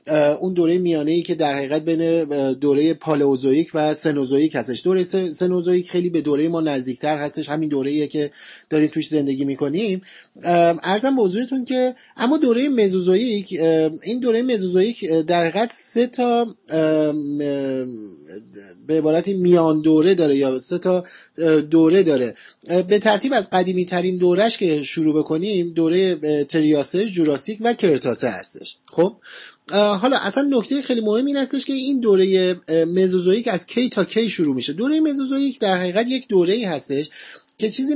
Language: Persian